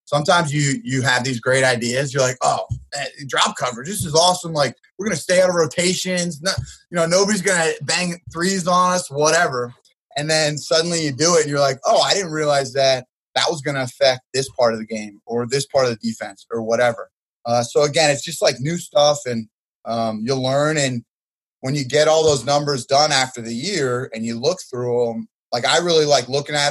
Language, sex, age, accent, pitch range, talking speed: English, male, 20-39, American, 120-150 Hz, 225 wpm